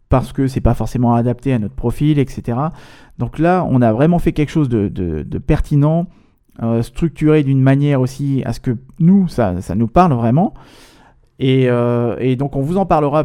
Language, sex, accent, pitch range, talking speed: French, male, French, 120-150 Hz, 200 wpm